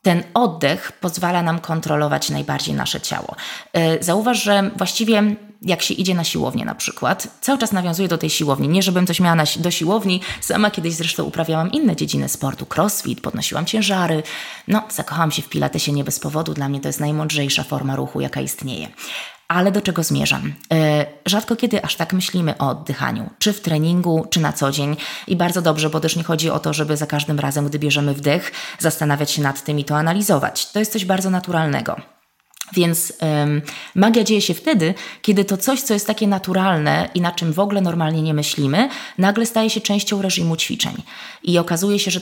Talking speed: 195 wpm